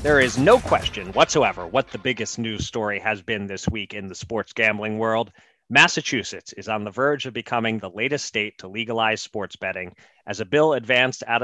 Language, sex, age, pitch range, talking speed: English, male, 30-49, 110-140 Hz, 200 wpm